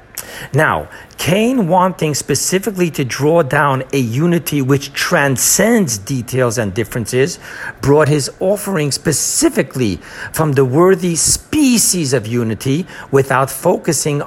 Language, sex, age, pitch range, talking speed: English, male, 60-79, 130-175 Hz, 110 wpm